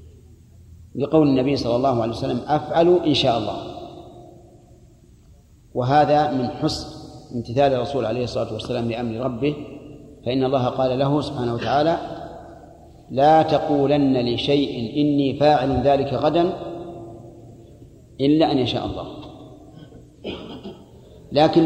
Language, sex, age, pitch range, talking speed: Arabic, male, 40-59, 130-150 Hz, 105 wpm